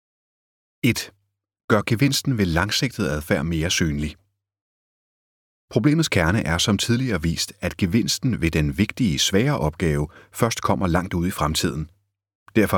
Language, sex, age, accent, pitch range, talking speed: Danish, male, 30-49, native, 80-100 Hz, 130 wpm